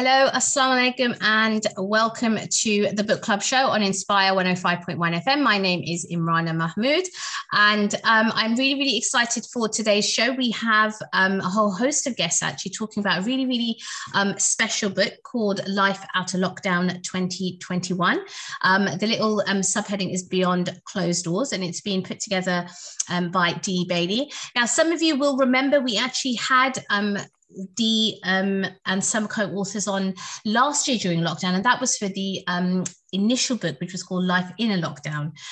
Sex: female